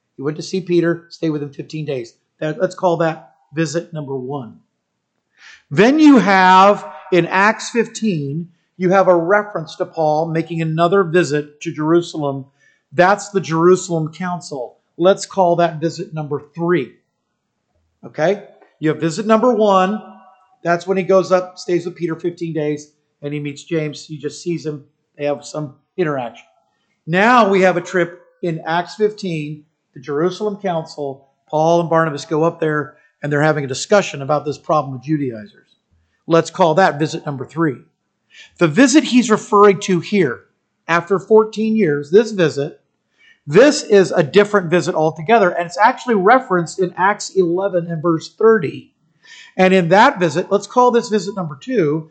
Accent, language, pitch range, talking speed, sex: American, English, 155-195 Hz, 160 wpm, male